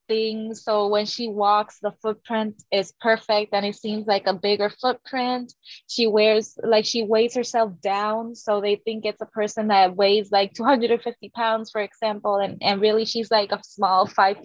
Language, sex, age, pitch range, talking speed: English, female, 10-29, 200-230 Hz, 185 wpm